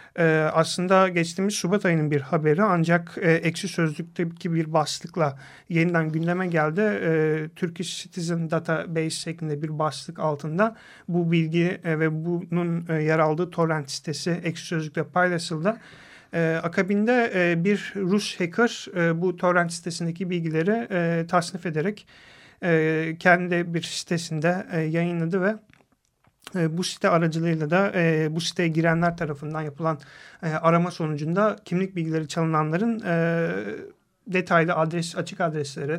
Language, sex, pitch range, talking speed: Turkish, male, 160-180 Hz, 120 wpm